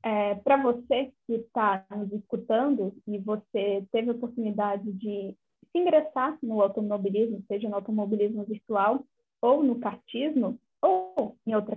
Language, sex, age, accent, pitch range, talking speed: Portuguese, female, 10-29, Brazilian, 215-280 Hz, 140 wpm